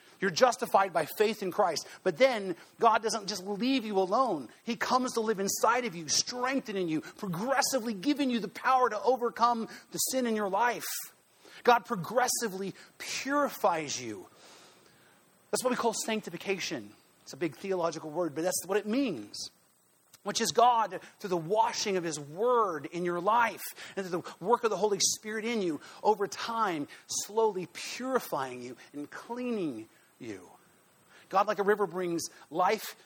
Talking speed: 165 wpm